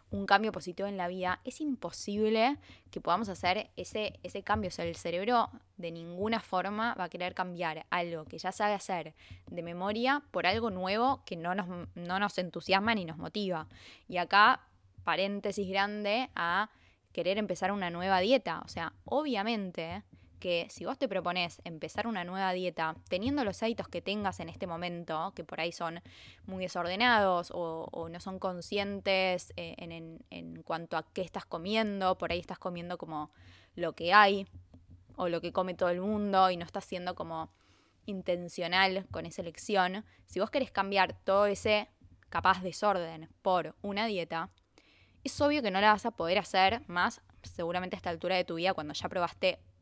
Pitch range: 170-205 Hz